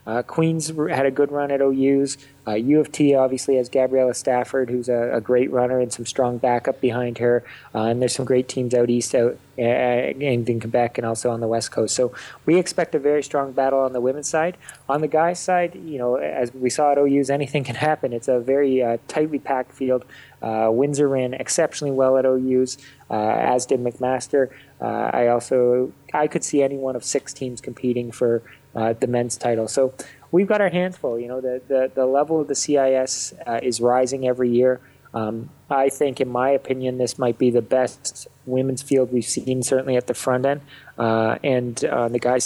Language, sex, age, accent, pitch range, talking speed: English, male, 20-39, American, 120-135 Hz, 210 wpm